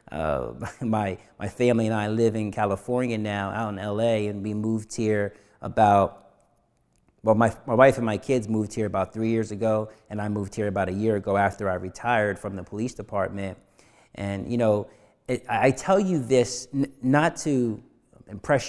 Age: 30-49